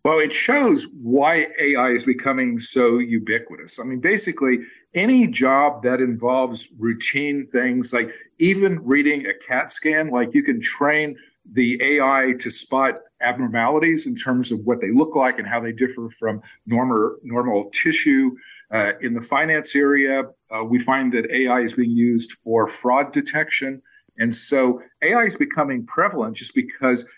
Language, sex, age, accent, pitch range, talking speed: English, male, 50-69, American, 120-145 Hz, 160 wpm